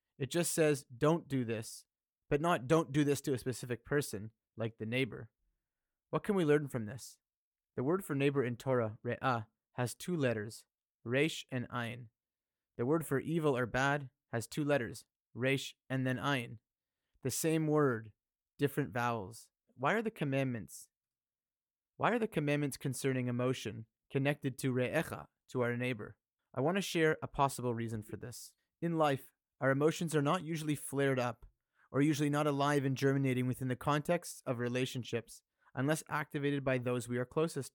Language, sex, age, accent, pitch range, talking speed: English, male, 30-49, American, 120-150 Hz, 170 wpm